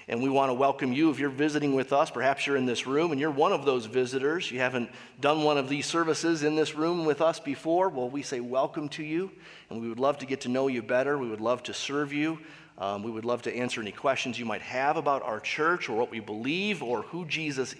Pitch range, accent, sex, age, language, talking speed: 125-160 Hz, American, male, 40-59, English, 265 wpm